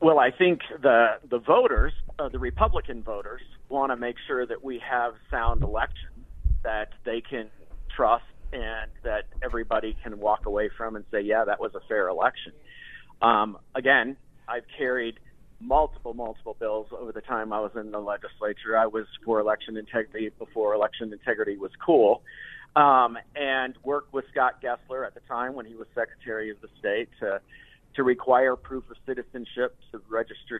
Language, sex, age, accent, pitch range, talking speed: English, male, 50-69, American, 110-135 Hz, 175 wpm